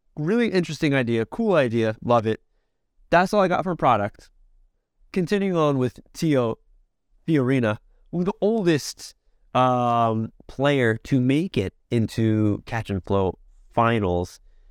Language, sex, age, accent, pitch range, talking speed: English, male, 20-39, American, 105-150 Hz, 125 wpm